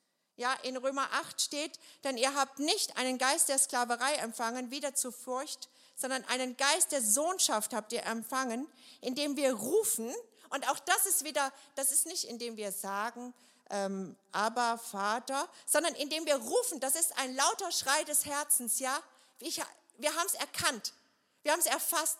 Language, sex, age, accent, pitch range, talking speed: German, female, 50-69, German, 225-280 Hz, 170 wpm